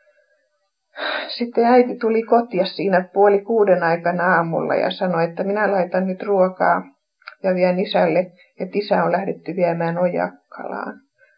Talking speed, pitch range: 130 wpm, 180-210 Hz